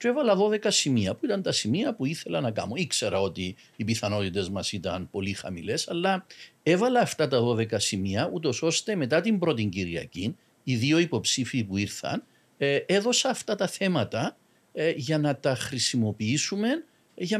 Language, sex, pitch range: Greek, male, 105-175 Hz